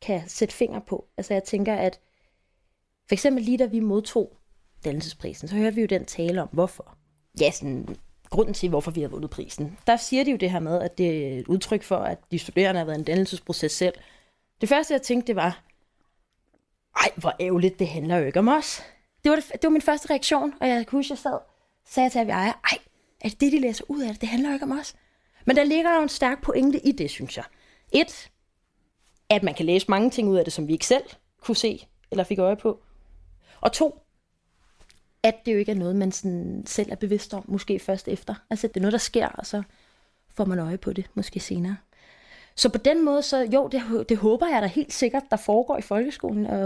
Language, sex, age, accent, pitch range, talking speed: Danish, female, 30-49, native, 185-255 Hz, 235 wpm